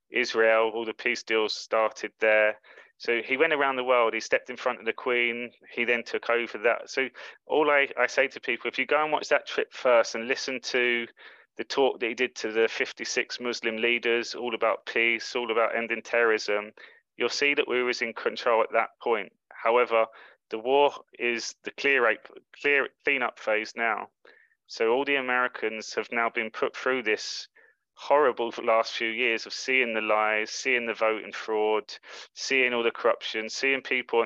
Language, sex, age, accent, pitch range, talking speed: English, male, 20-39, British, 115-130 Hz, 195 wpm